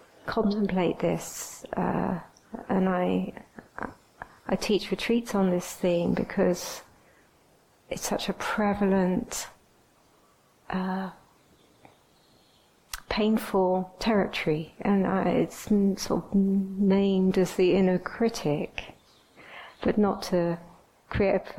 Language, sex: English, female